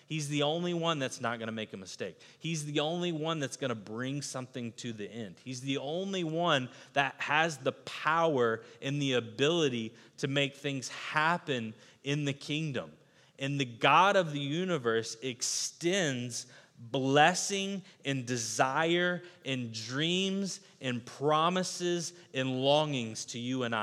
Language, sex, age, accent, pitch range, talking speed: English, male, 30-49, American, 120-150 Hz, 150 wpm